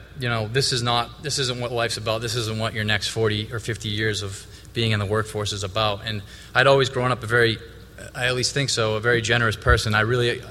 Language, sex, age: English, male, 20-39